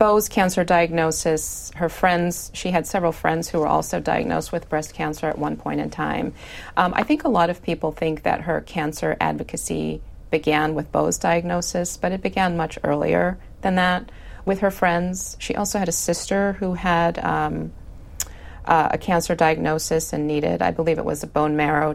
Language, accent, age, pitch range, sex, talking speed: English, American, 30-49, 150-175 Hz, female, 185 wpm